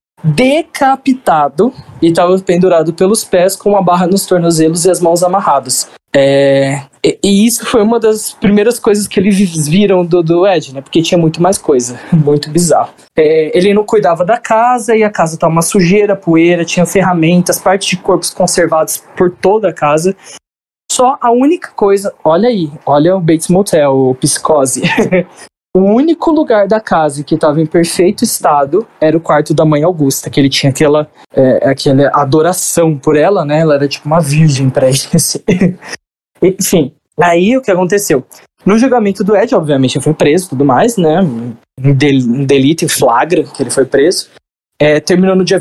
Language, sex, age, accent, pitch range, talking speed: Portuguese, male, 20-39, Brazilian, 150-205 Hz, 180 wpm